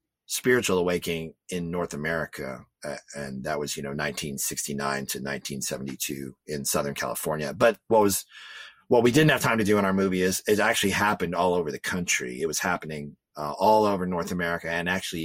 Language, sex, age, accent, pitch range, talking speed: English, male, 30-49, American, 85-105 Hz, 190 wpm